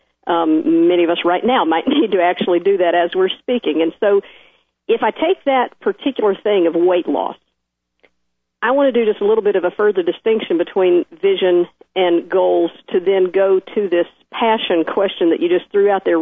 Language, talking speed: English, 205 wpm